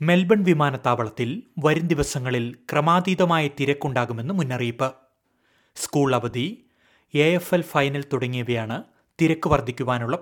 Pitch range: 125-155 Hz